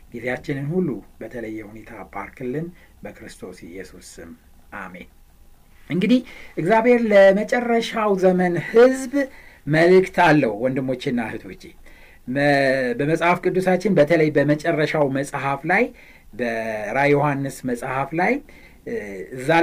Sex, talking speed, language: male, 85 wpm, Amharic